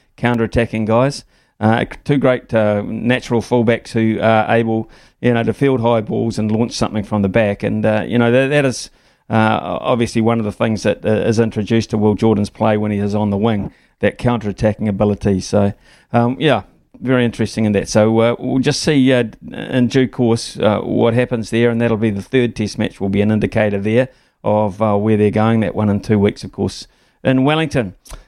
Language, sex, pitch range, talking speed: English, male, 110-125 Hz, 210 wpm